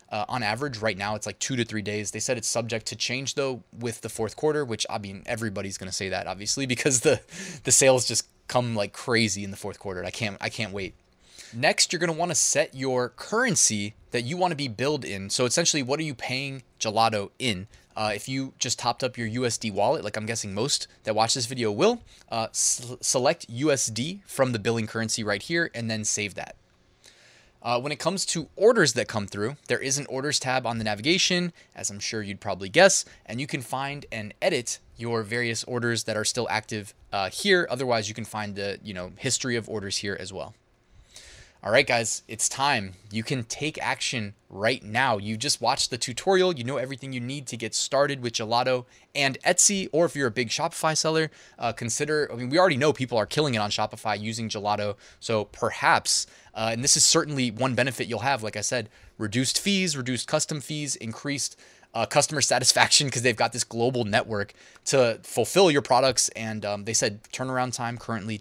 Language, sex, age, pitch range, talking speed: English, male, 20-39, 110-135 Hz, 215 wpm